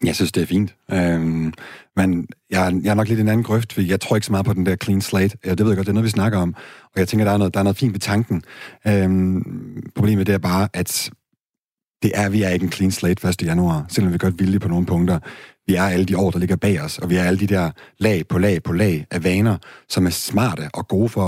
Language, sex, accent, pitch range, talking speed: Danish, male, native, 90-105 Hz, 290 wpm